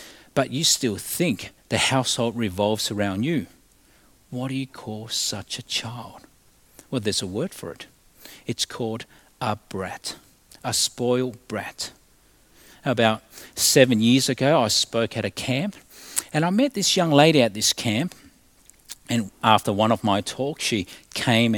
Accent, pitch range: Australian, 110-150 Hz